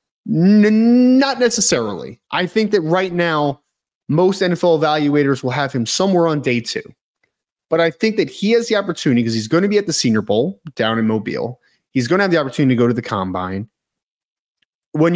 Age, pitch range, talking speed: 30-49, 130-185 Hz, 200 wpm